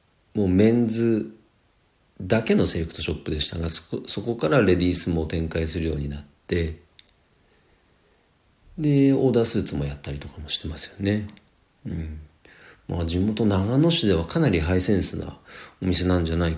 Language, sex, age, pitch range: Japanese, male, 40-59, 80-115 Hz